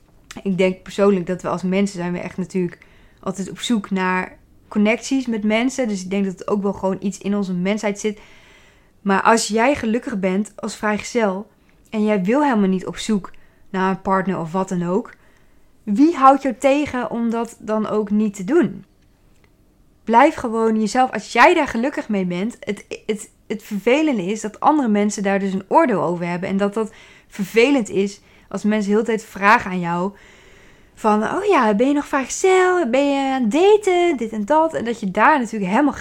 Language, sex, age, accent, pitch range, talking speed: Dutch, female, 20-39, Dutch, 195-235 Hz, 200 wpm